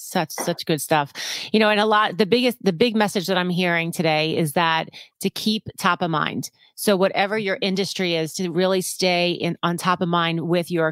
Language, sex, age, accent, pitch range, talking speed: English, female, 30-49, American, 170-210 Hz, 220 wpm